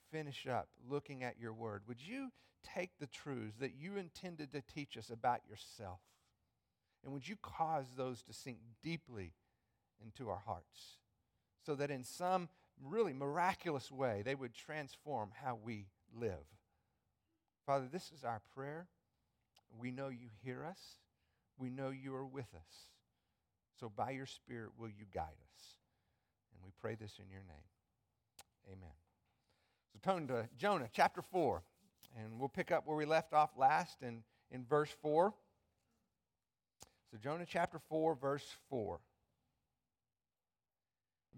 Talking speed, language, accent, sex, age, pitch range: 145 wpm, English, American, male, 50-69, 115-165 Hz